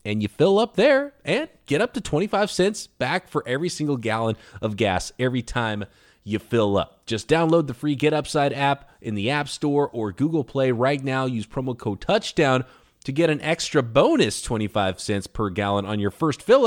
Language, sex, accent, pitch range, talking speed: English, male, American, 115-185 Hz, 200 wpm